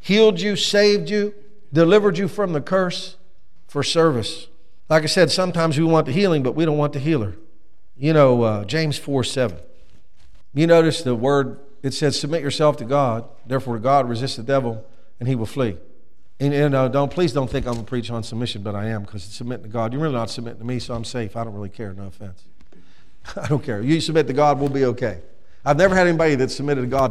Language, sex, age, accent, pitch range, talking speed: English, male, 50-69, American, 120-170 Hz, 230 wpm